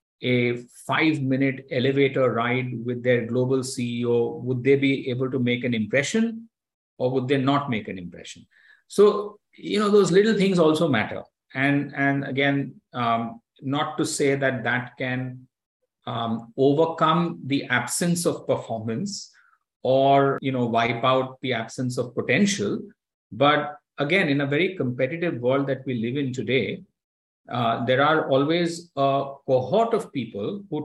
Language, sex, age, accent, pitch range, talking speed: English, male, 50-69, Indian, 125-145 Hz, 150 wpm